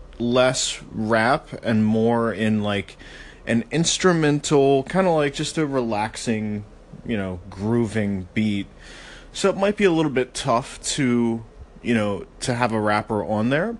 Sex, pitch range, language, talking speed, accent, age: male, 110-145 Hz, English, 150 wpm, American, 30-49